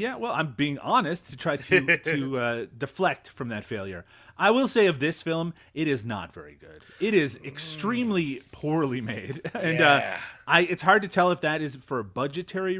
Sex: male